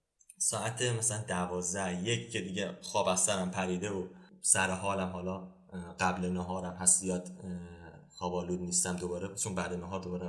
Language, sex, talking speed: Persian, male, 145 wpm